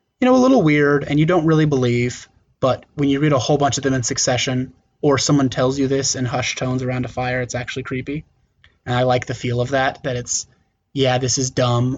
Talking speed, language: 240 wpm, English